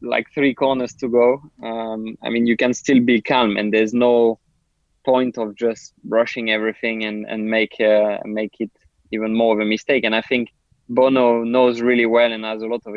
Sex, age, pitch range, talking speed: male, 20-39, 110-125 Hz, 205 wpm